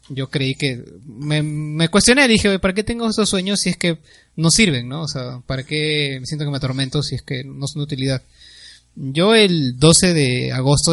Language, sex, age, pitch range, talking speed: Spanish, male, 20-39, 125-160 Hz, 215 wpm